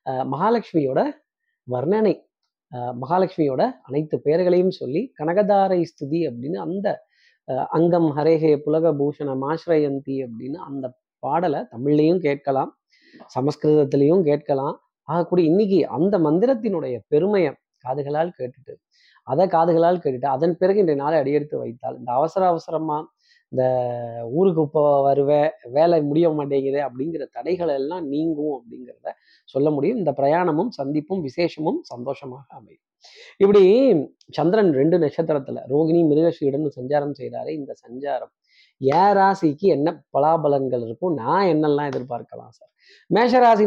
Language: Tamil